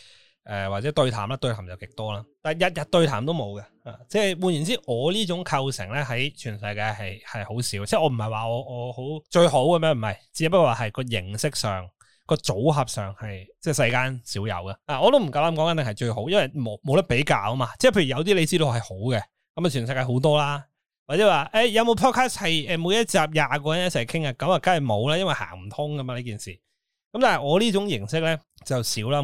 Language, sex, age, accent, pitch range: Chinese, male, 20-39, native, 105-155 Hz